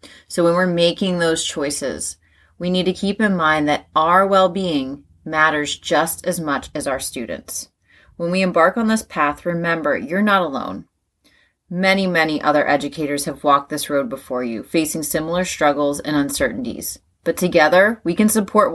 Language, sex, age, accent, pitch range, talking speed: English, female, 30-49, American, 145-185 Hz, 165 wpm